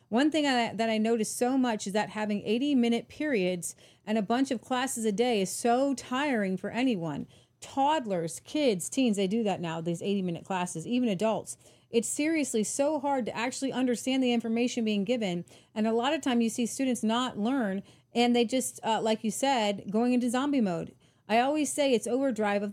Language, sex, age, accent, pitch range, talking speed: English, female, 30-49, American, 210-270 Hz, 195 wpm